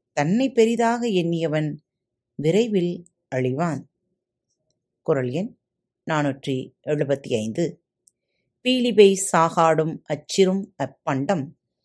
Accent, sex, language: native, female, Tamil